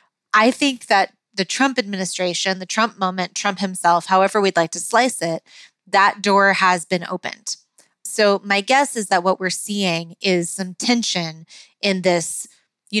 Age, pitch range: 20-39, 180-205 Hz